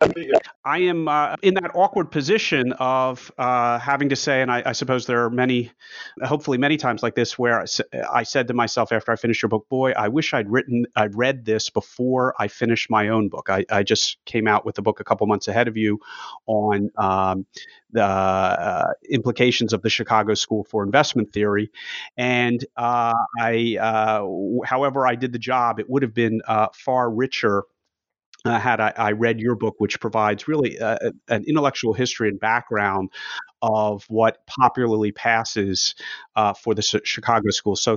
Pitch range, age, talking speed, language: 110-130 Hz, 30-49, 190 wpm, English